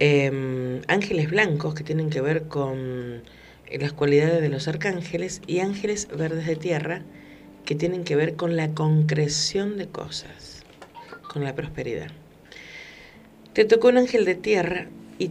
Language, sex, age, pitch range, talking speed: Spanish, female, 50-69, 150-185 Hz, 145 wpm